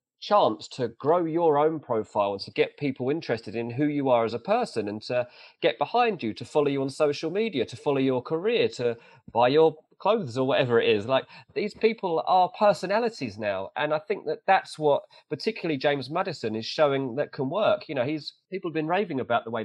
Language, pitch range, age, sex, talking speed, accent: English, 125-185 Hz, 30-49, male, 215 wpm, British